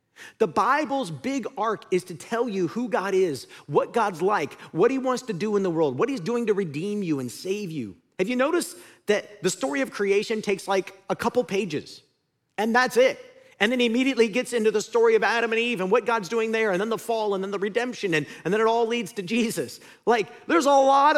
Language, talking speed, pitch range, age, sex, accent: English, 240 wpm, 145-240 Hz, 40-59, male, American